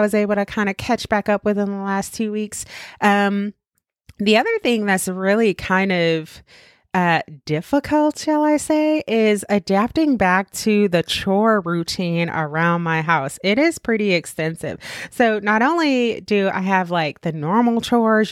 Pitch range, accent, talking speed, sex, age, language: 175-230 Hz, American, 165 wpm, female, 30-49, English